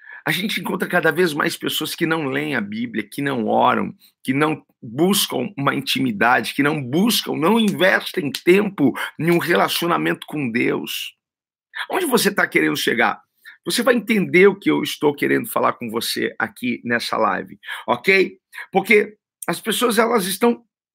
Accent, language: Brazilian, Portuguese